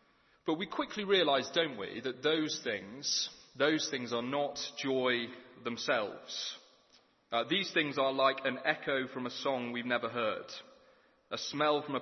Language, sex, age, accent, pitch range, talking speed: English, male, 30-49, British, 120-150 Hz, 160 wpm